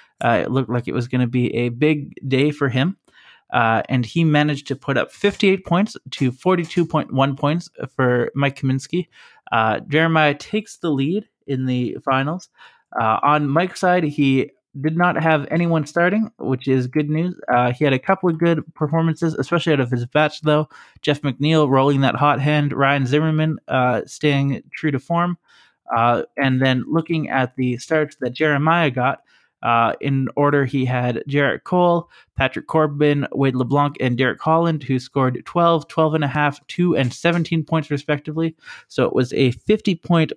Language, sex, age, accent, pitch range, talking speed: English, male, 20-39, American, 130-160 Hz, 175 wpm